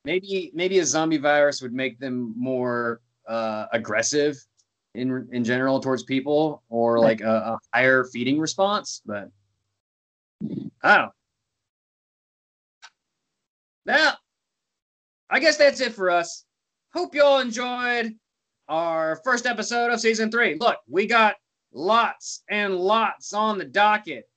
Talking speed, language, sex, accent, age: 130 wpm, English, male, American, 20-39